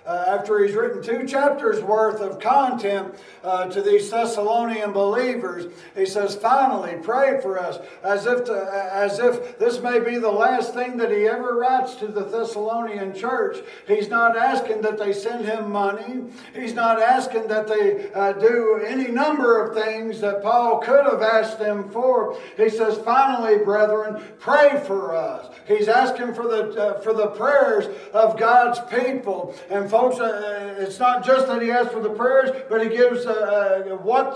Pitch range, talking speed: 215-255 Hz, 170 wpm